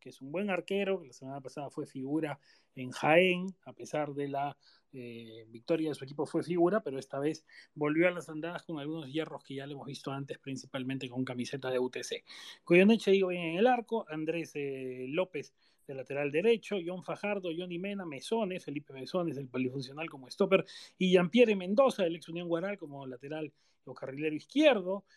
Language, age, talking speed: Spanish, 30-49, 190 wpm